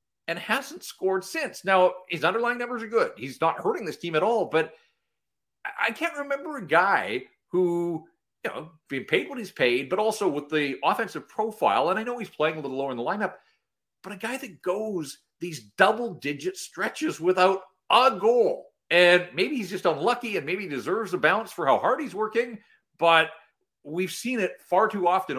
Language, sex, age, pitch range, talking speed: English, male, 40-59, 145-230 Hz, 195 wpm